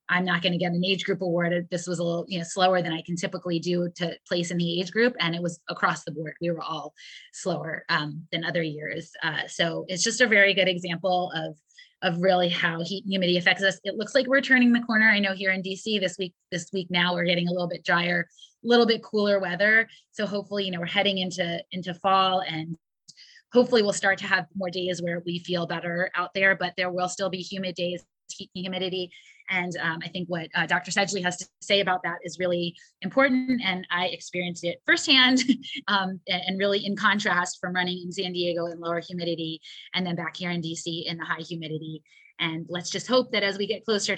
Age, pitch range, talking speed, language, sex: 20-39, 175-195 Hz, 235 wpm, English, female